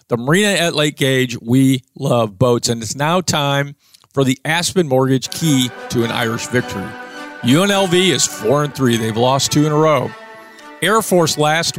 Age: 50-69